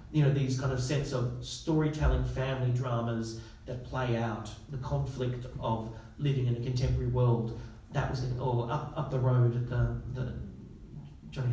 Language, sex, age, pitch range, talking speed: English, male, 40-59, 120-140 Hz, 170 wpm